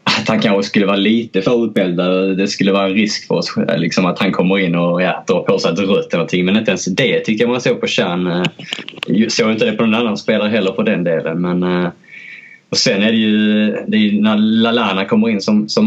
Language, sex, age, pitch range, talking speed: Swedish, male, 20-39, 90-110 Hz, 230 wpm